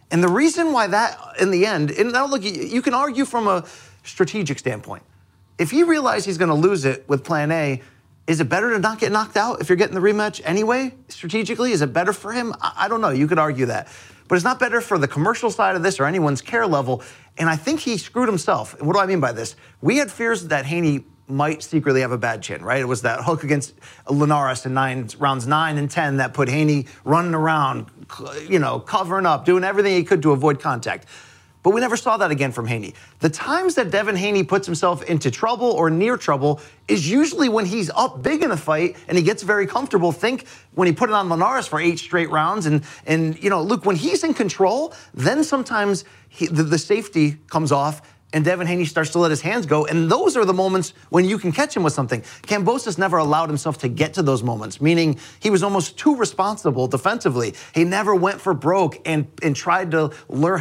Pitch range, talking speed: 145-205 Hz, 230 wpm